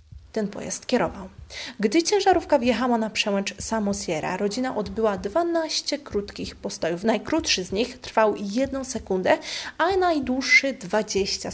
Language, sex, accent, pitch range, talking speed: Polish, female, native, 200-275 Hz, 120 wpm